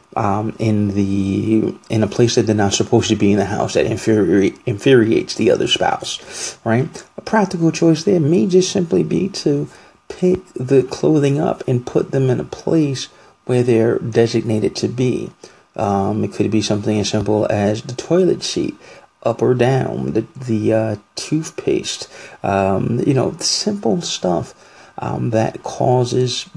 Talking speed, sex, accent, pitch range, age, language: 160 wpm, male, American, 105-140 Hz, 30-49, English